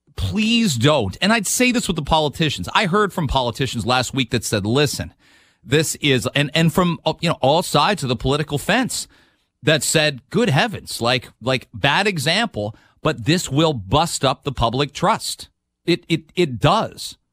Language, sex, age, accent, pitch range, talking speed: English, male, 40-59, American, 115-150 Hz, 175 wpm